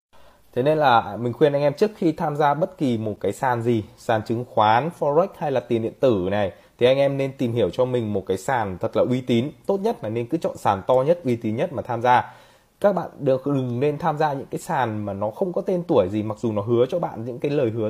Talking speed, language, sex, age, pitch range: 280 wpm, Vietnamese, male, 20-39, 120-155 Hz